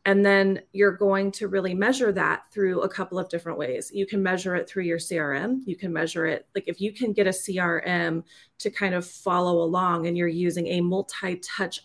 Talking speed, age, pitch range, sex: 215 wpm, 30-49, 170-195 Hz, female